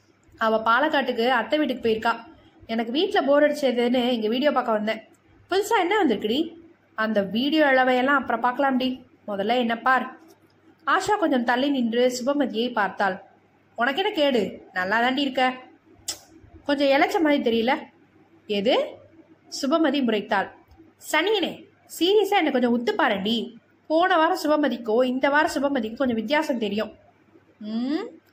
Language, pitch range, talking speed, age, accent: Tamil, 230-315 Hz, 115 wpm, 20-39, native